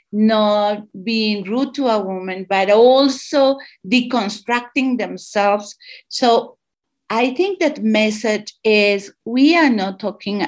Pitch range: 200-260 Hz